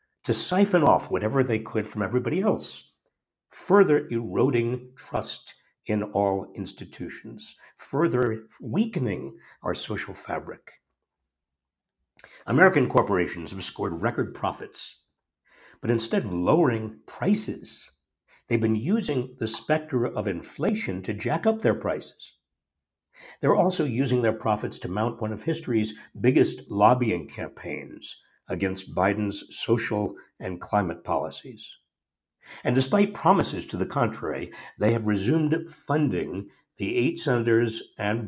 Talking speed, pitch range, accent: 120 wpm, 105-145 Hz, American